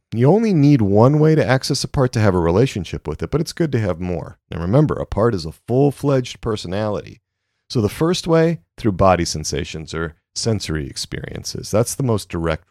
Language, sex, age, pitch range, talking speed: English, male, 40-59, 90-135 Hz, 210 wpm